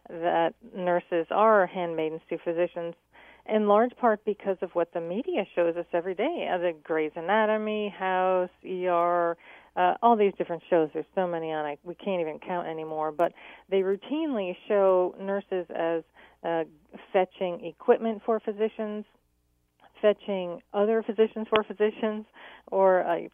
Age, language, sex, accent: 40-59, English, female, American